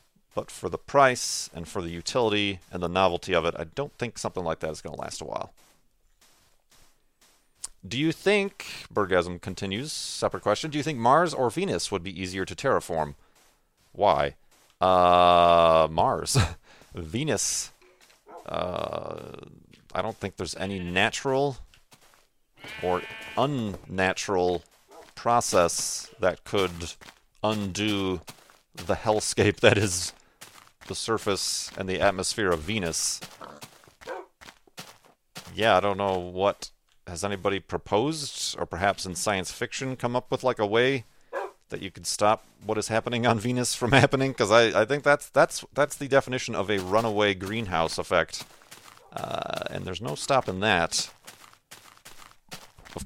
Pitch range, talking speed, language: 90-125 Hz, 140 wpm, English